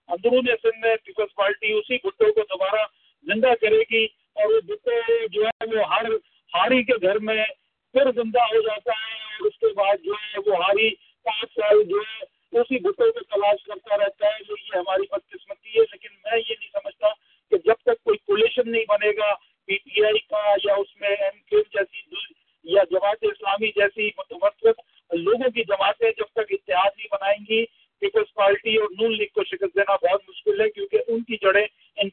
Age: 50-69